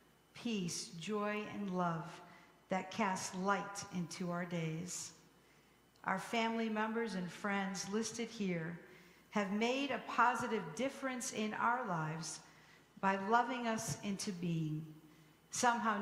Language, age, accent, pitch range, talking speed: English, 50-69, American, 170-210 Hz, 115 wpm